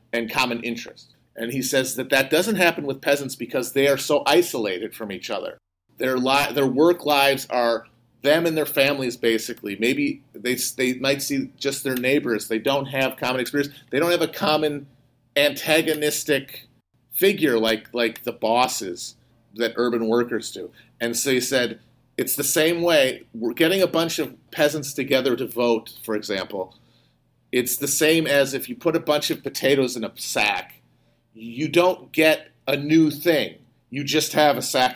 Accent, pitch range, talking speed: American, 120-145 Hz, 175 wpm